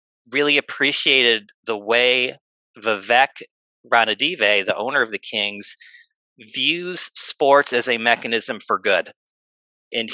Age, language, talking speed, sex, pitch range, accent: 40-59, English, 110 wpm, male, 105-140 Hz, American